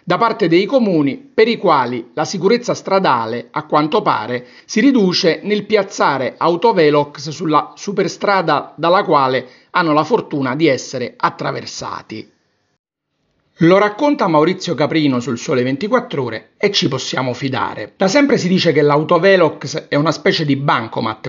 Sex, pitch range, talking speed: male, 130-195 Hz, 145 wpm